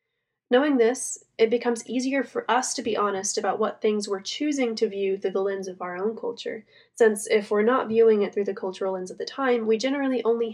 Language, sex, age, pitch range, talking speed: English, female, 10-29, 200-255 Hz, 230 wpm